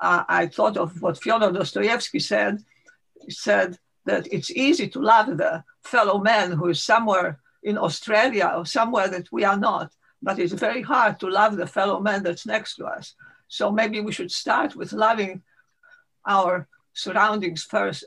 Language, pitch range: Polish, 185-235 Hz